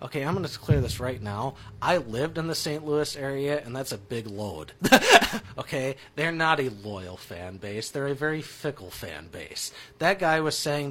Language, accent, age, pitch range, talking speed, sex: English, American, 30-49, 130-180 Hz, 205 wpm, male